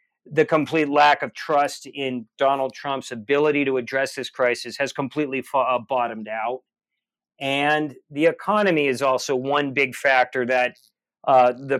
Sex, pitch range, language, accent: male, 130-150 Hz, English, American